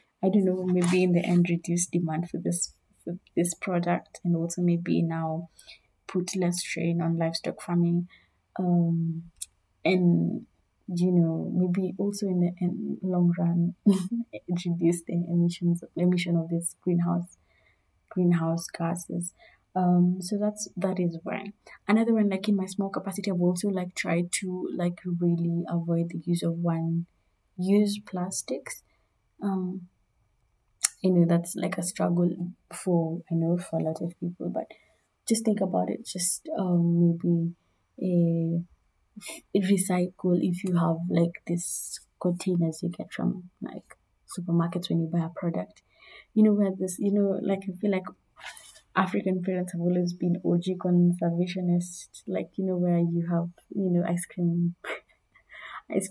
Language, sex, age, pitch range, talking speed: English, female, 20-39, 170-185 Hz, 150 wpm